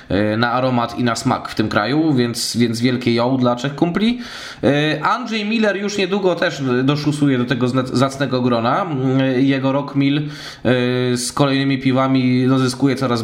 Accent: native